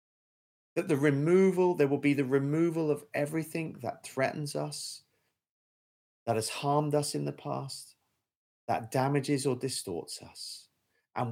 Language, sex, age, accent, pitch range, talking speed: English, male, 30-49, British, 100-140 Hz, 140 wpm